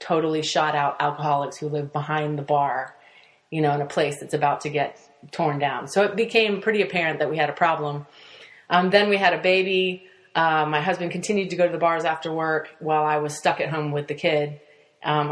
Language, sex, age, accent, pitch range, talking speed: English, female, 30-49, American, 150-170 Hz, 225 wpm